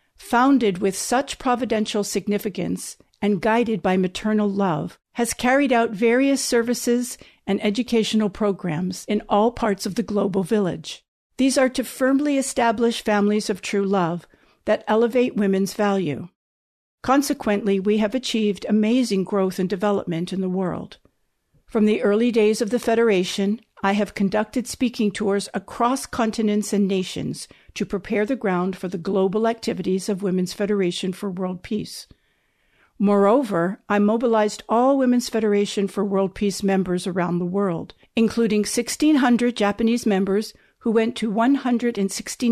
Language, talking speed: English, 140 wpm